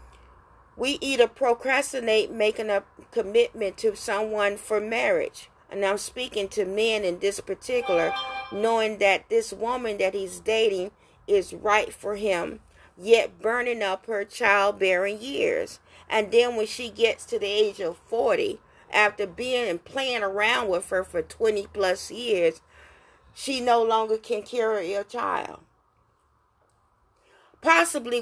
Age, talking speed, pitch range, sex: 40-59, 135 wpm, 200-250 Hz, female